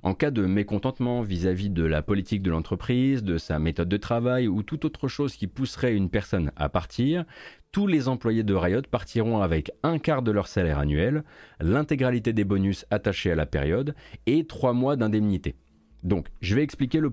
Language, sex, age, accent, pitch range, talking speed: French, male, 30-49, French, 90-125 Hz, 190 wpm